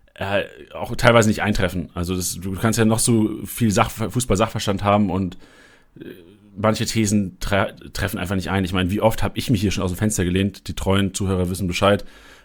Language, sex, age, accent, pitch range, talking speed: German, male, 40-59, German, 95-125 Hz, 200 wpm